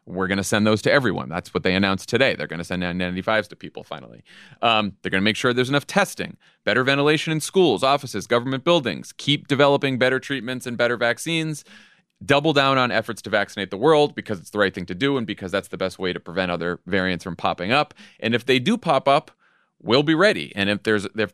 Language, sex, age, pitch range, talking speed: English, male, 30-49, 95-140 Hz, 235 wpm